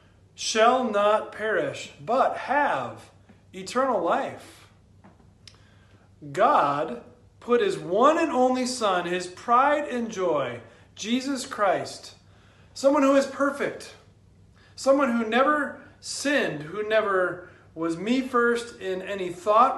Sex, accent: male, American